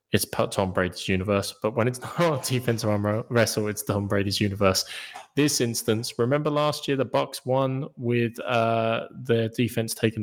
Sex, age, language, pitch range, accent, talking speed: male, 20-39, English, 100-125 Hz, British, 175 wpm